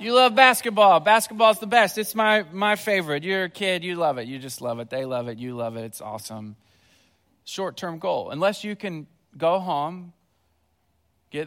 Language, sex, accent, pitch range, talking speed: English, male, American, 115-180 Hz, 190 wpm